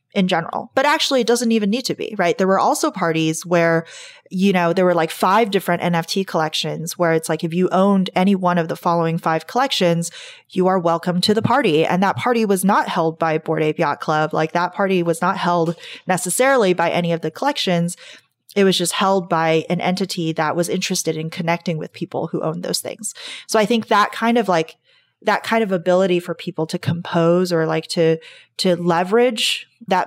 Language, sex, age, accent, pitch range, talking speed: English, female, 20-39, American, 165-195 Hz, 210 wpm